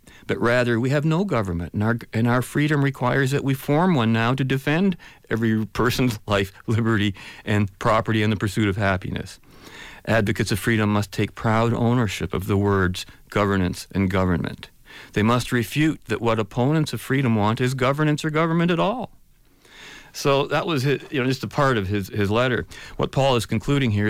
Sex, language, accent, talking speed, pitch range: male, English, American, 190 wpm, 95-125 Hz